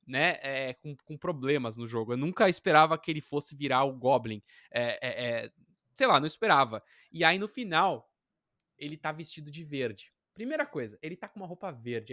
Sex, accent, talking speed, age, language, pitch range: male, Brazilian, 200 wpm, 20-39, Portuguese, 135-195 Hz